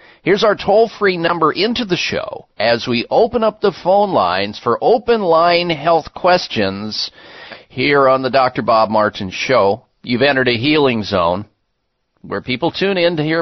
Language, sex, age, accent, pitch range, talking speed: English, male, 50-69, American, 155-200 Hz, 170 wpm